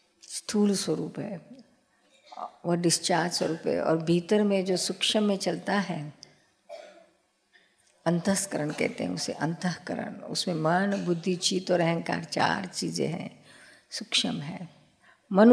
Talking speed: 125 wpm